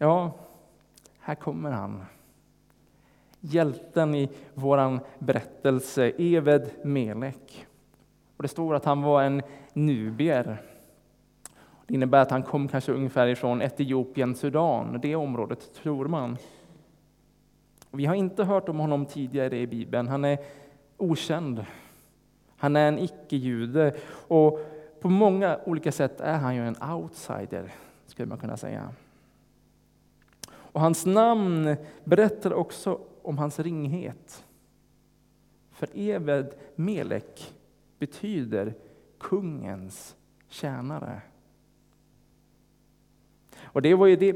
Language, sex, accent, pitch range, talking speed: Swedish, male, Norwegian, 130-165 Hz, 110 wpm